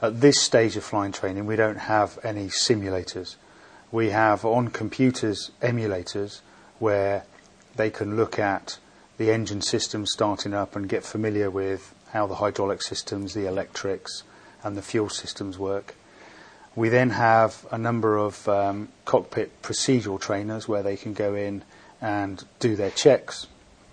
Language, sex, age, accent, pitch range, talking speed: English, male, 30-49, British, 100-110 Hz, 150 wpm